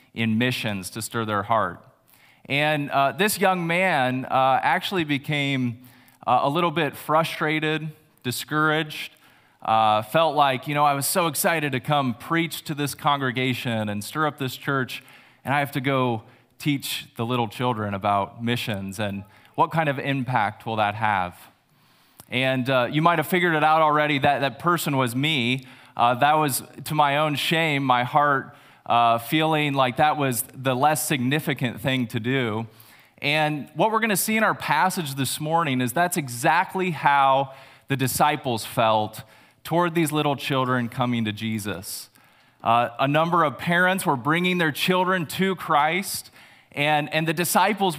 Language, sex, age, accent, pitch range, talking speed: English, male, 20-39, American, 125-160 Hz, 165 wpm